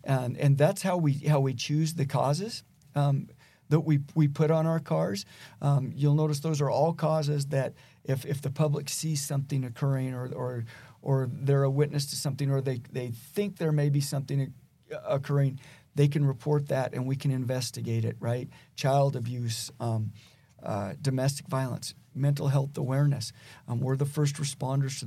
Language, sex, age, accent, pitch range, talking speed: English, male, 40-59, American, 130-150 Hz, 180 wpm